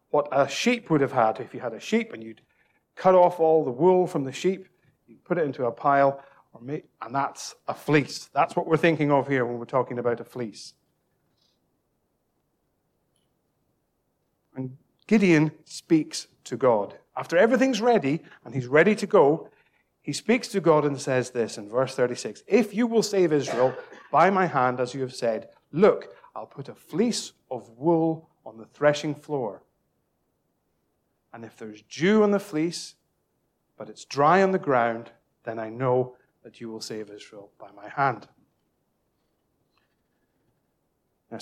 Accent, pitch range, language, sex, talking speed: British, 125-165 Hz, English, male, 165 wpm